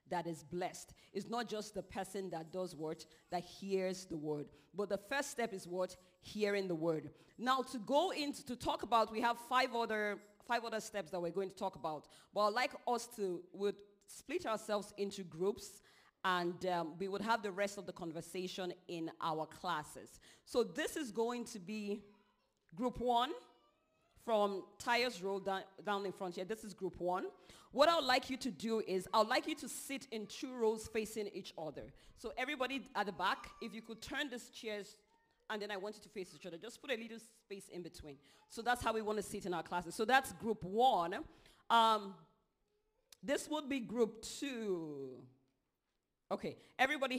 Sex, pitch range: female, 185-235 Hz